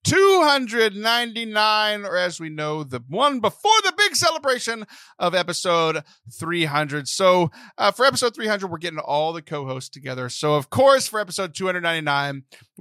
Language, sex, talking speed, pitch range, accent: English, male, 145 wpm, 140-215 Hz, American